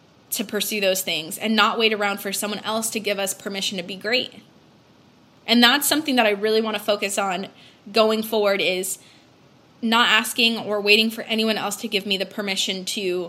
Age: 10-29